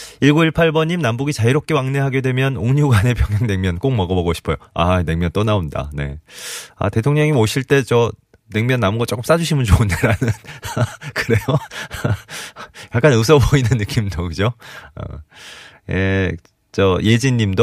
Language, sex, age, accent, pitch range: Korean, male, 30-49, native, 95-140 Hz